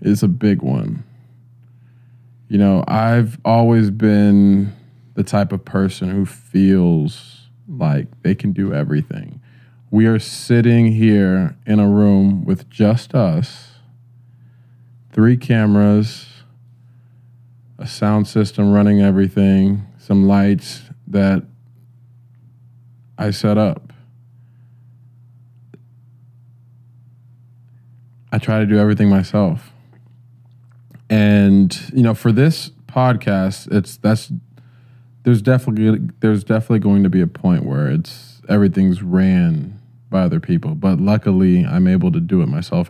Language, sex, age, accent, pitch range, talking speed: English, male, 20-39, American, 105-125 Hz, 115 wpm